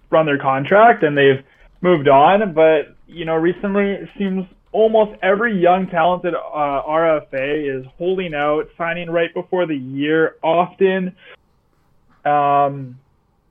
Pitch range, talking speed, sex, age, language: 135-180 Hz, 130 wpm, male, 20-39, English